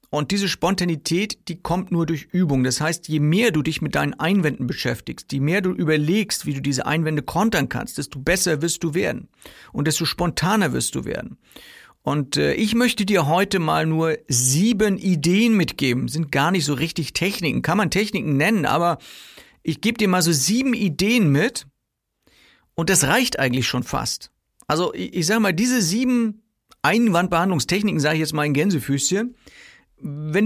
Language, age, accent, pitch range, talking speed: German, 50-69, German, 140-190 Hz, 175 wpm